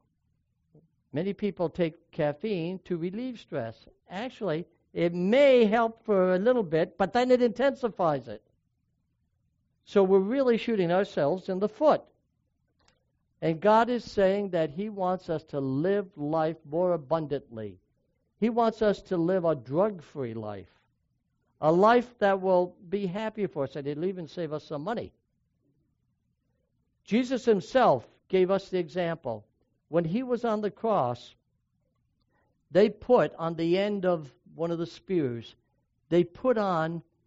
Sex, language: male, English